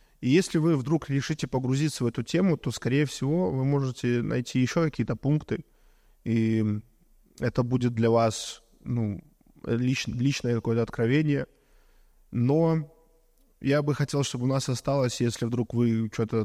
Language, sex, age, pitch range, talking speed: Russian, male, 20-39, 120-150 Hz, 145 wpm